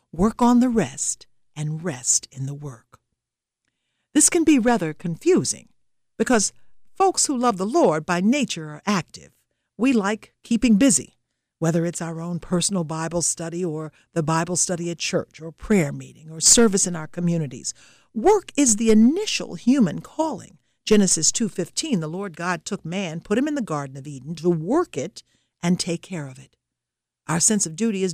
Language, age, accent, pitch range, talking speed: English, 60-79, American, 155-225 Hz, 175 wpm